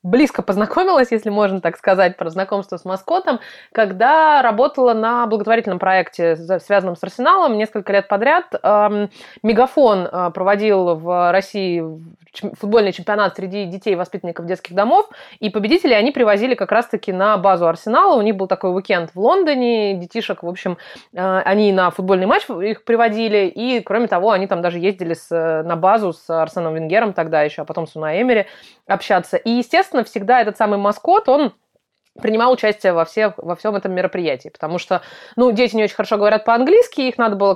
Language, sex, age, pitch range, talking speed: Russian, female, 20-39, 185-235 Hz, 165 wpm